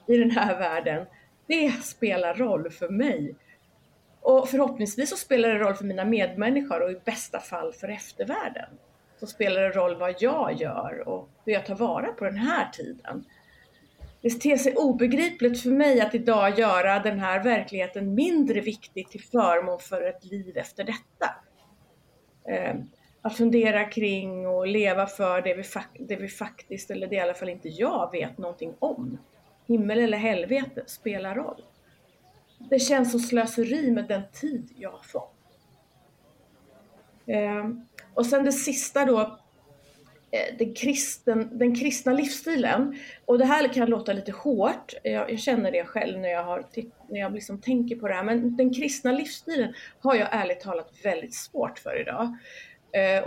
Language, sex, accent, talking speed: Swedish, female, native, 160 wpm